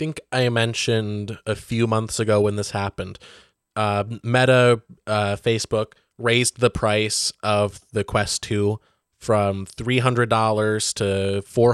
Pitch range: 105-125 Hz